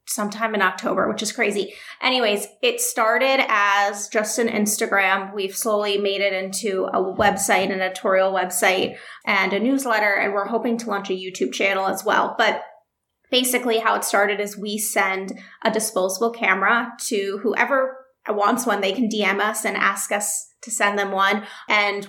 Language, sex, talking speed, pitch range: English, female, 170 wpm, 200-225 Hz